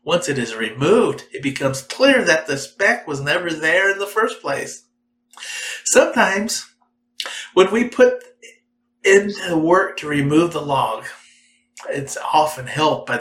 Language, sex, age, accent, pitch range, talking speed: English, male, 50-69, American, 145-240 Hz, 145 wpm